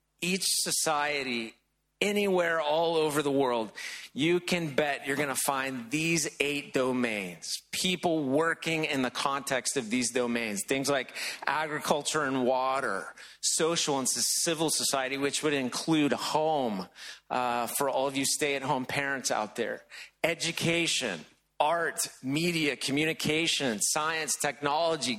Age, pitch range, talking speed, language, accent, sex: 30-49, 130-165 Hz, 130 wpm, English, American, male